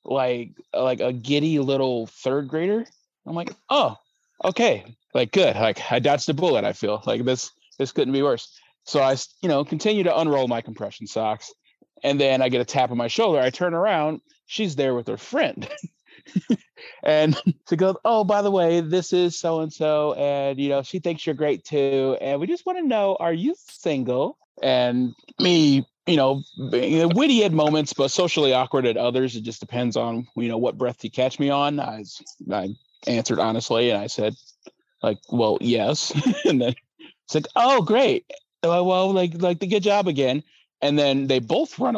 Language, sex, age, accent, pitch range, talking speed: English, male, 30-49, American, 125-170 Hz, 190 wpm